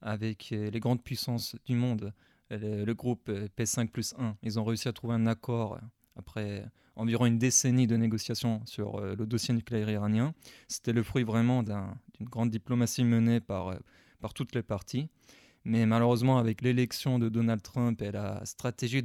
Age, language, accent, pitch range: 20-39, English, French, 110-125 Hz